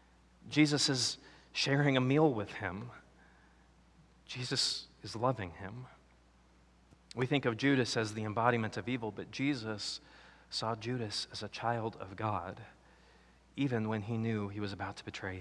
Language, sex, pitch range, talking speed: English, male, 95-130 Hz, 150 wpm